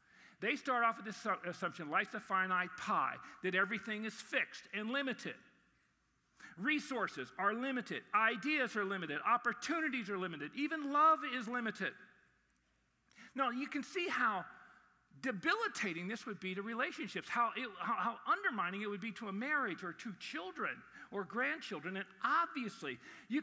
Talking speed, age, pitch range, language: 145 wpm, 50-69, 195-285 Hz, English